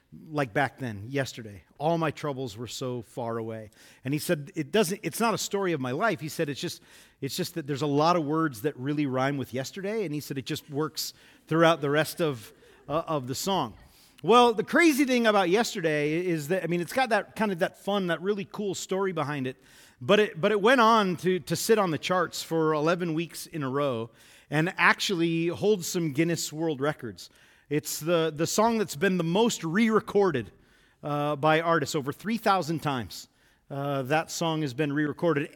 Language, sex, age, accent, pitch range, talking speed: English, male, 40-59, American, 150-200 Hz, 205 wpm